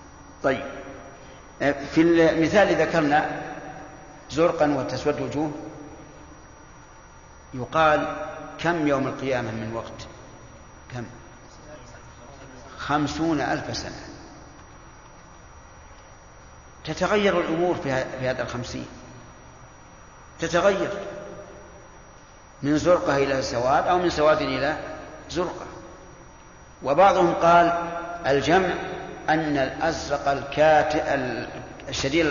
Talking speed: 70 wpm